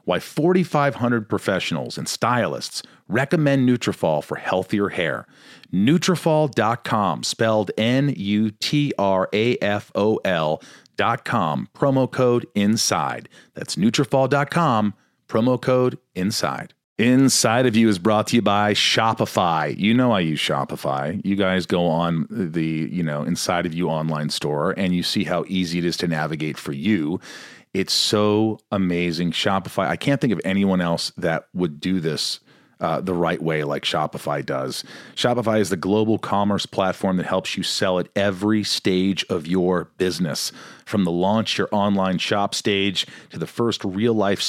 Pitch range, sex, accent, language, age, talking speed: 90-120 Hz, male, American, English, 40-59, 155 wpm